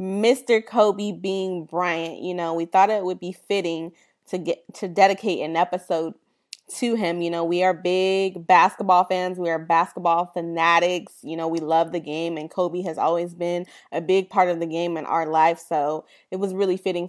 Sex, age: female, 20-39